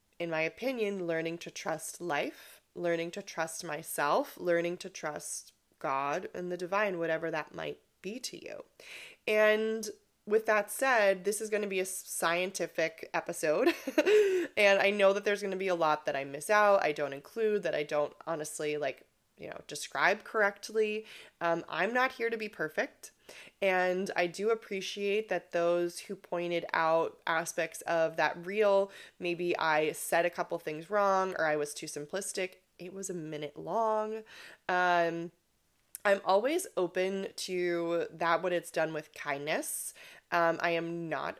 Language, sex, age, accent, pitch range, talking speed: English, female, 20-39, American, 165-205 Hz, 165 wpm